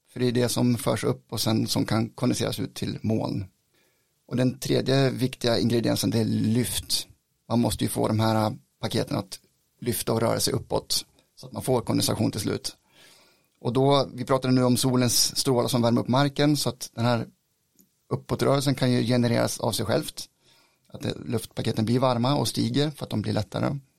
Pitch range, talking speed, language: 115-135 Hz, 195 wpm, Swedish